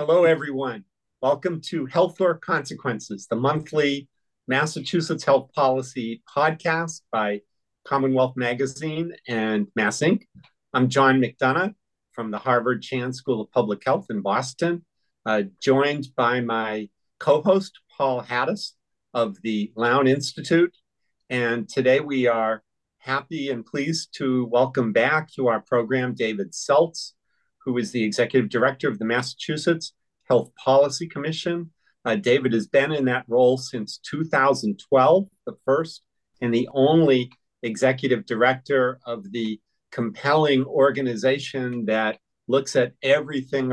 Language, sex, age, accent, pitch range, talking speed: English, male, 50-69, American, 120-145 Hz, 130 wpm